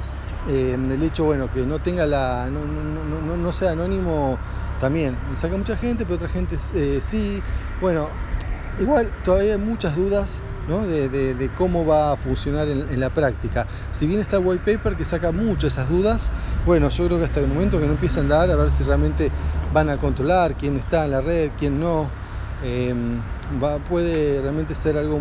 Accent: Argentinian